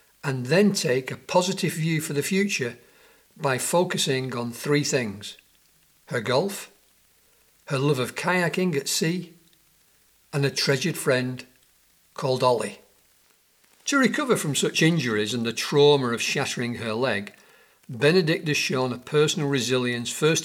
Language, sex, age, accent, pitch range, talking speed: English, male, 50-69, British, 130-180 Hz, 140 wpm